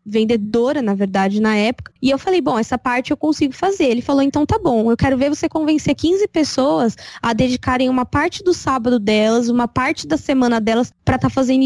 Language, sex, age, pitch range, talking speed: Portuguese, female, 10-29, 230-285 Hz, 210 wpm